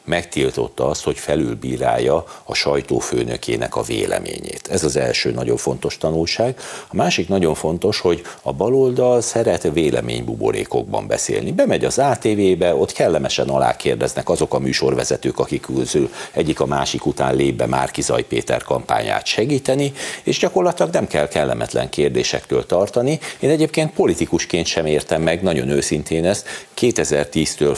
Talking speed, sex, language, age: 135 wpm, male, Hungarian, 60-79